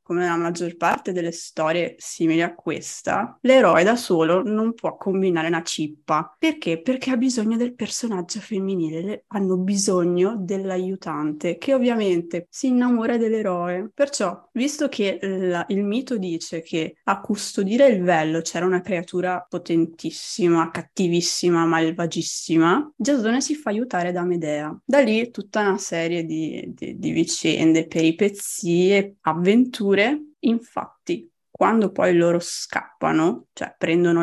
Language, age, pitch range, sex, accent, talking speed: Italian, 20-39, 170-220 Hz, female, native, 130 wpm